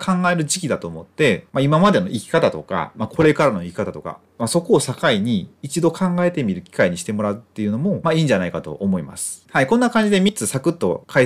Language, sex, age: Japanese, male, 30-49